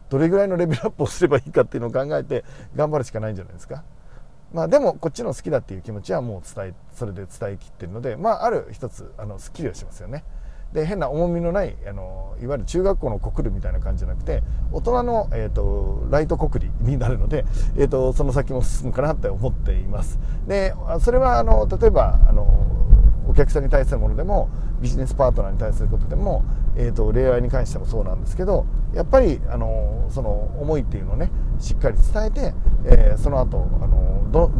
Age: 40-59